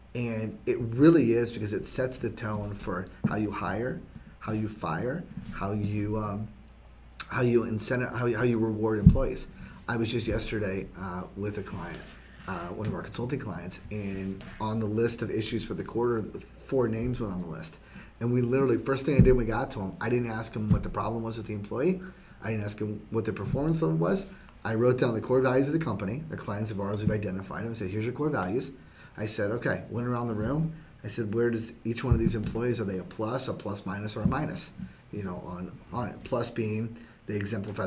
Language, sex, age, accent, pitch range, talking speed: English, male, 30-49, American, 105-125 Hz, 230 wpm